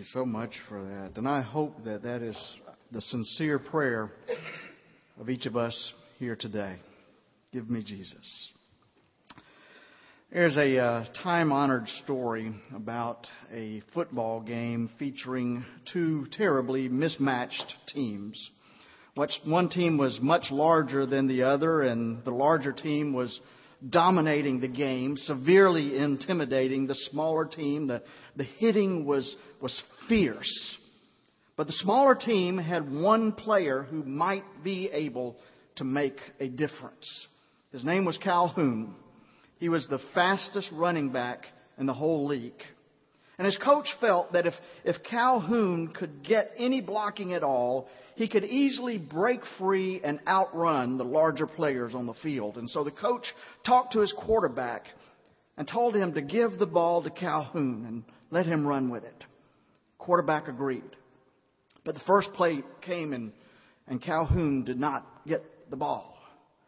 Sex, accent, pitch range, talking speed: male, American, 130-180 Hz, 140 wpm